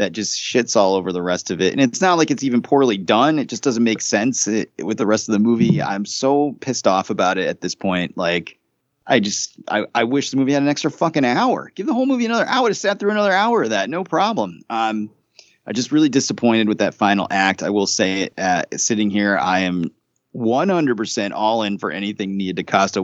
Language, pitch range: English, 95-125 Hz